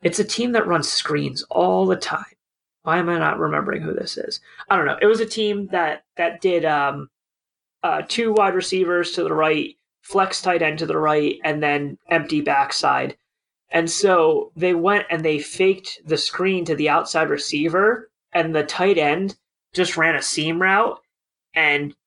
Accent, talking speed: American, 185 wpm